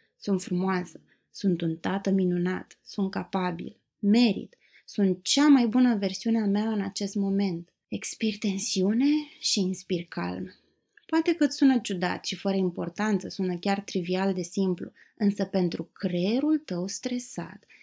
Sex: female